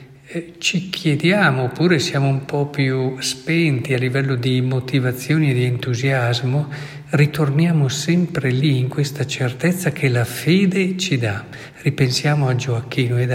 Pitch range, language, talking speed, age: 125-145 Hz, Italian, 135 wpm, 50-69